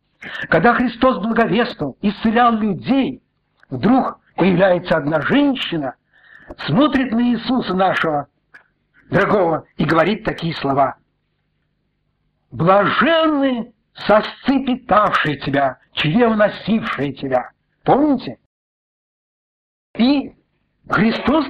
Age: 60-79